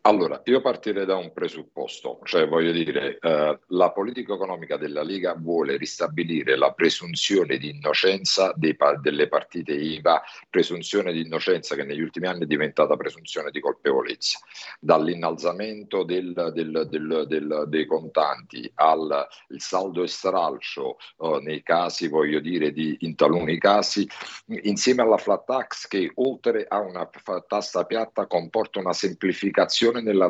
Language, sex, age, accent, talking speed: Italian, male, 50-69, native, 135 wpm